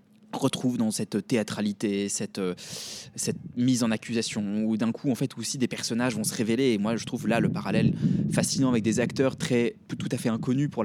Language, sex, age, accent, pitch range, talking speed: French, male, 20-39, French, 120-150 Hz, 205 wpm